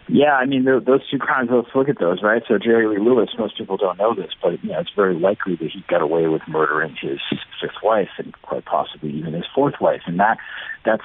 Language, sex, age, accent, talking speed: English, male, 50-69, American, 245 wpm